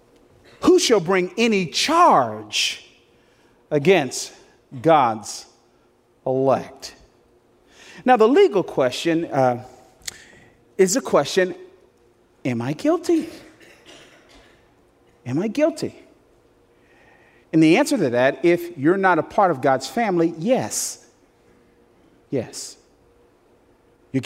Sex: male